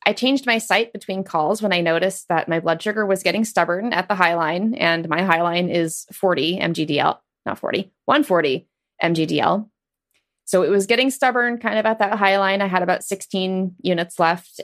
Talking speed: 195 wpm